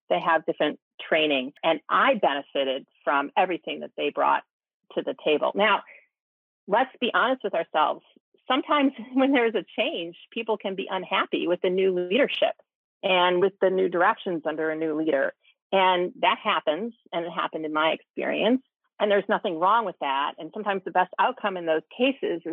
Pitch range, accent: 160-200 Hz, American